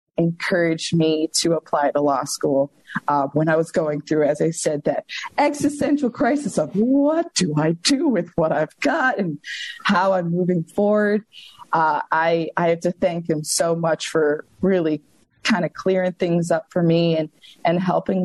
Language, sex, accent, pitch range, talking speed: English, female, American, 150-185 Hz, 180 wpm